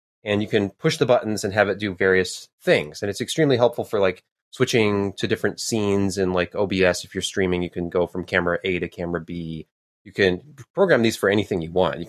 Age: 30-49